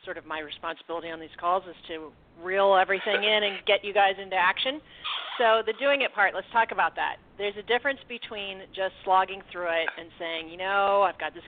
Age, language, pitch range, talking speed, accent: 40-59, English, 170-225 Hz, 220 wpm, American